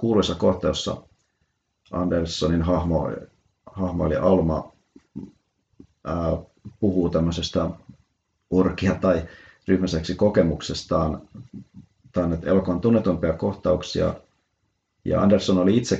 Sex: male